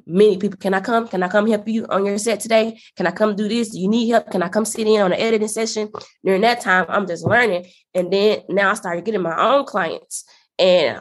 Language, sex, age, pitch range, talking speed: English, female, 20-39, 185-225 Hz, 260 wpm